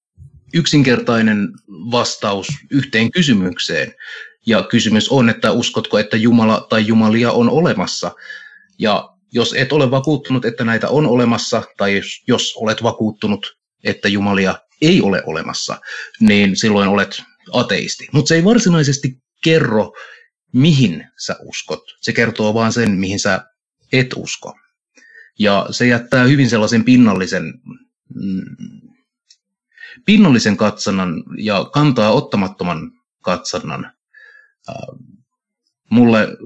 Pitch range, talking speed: 110-165 Hz, 110 wpm